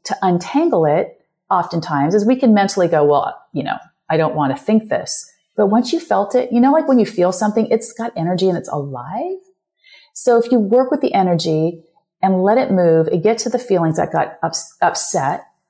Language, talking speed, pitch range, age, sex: English, 210 wpm, 175-240 Hz, 30-49, female